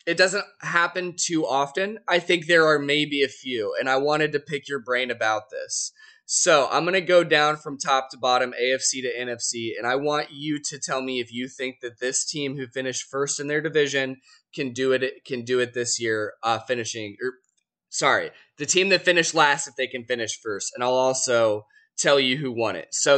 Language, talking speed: English, 215 wpm